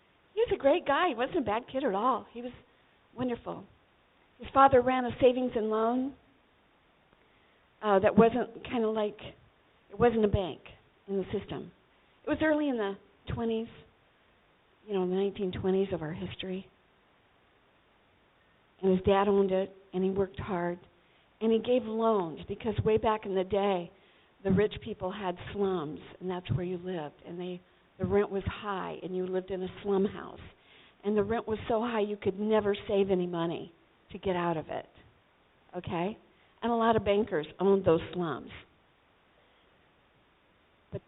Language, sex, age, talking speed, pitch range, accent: English, female, 50-69, 170 wpm, 185-225 Hz, American